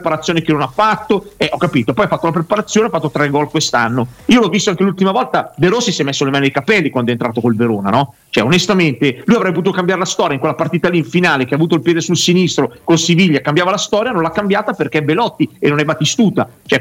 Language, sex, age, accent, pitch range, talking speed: Italian, male, 40-59, native, 145-190 Hz, 275 wpm